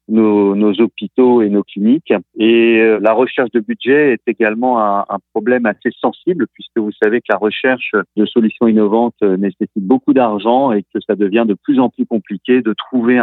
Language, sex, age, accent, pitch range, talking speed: French, male, 40-59, French, 100-120 Hz, 185 wpm